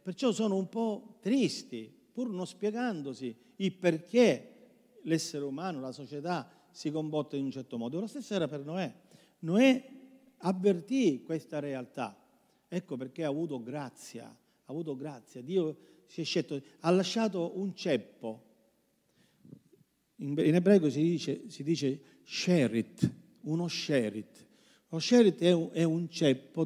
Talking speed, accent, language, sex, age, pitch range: 135 wpm, native, Italian, male, 50-69, 140-190 Hz